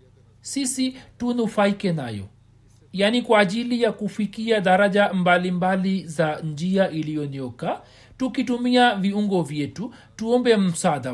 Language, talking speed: Swahili, 100 wpm